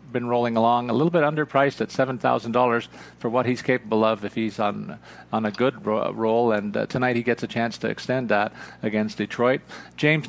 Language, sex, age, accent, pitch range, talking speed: English, male, 40-59, American, 115-135 Hz, 215 wpm